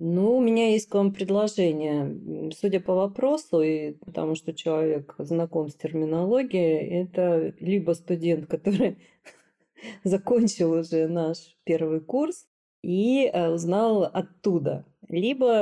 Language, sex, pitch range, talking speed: Russian, female, 160-205 Hz, 110 wpm